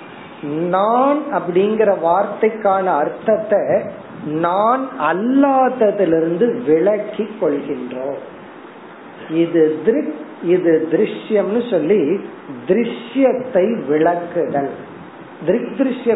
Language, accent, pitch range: Tamil, native, 165-220 Hz